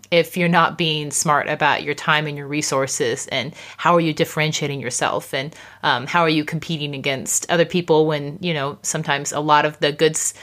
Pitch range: 155-185 Hz